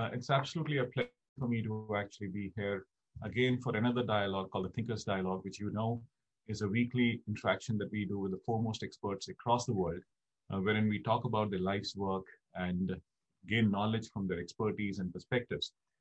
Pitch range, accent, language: 100-120 Hz, Indian, English